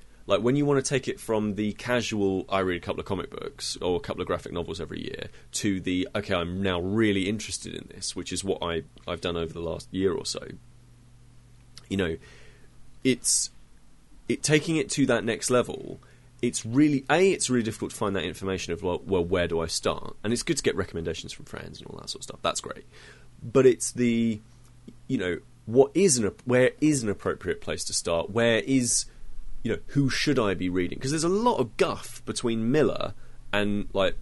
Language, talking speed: English, 215 wpm